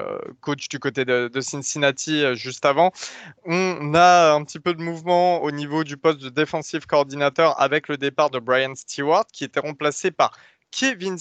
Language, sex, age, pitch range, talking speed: French, male, 20-39, 135-175 Hz, 180 wpm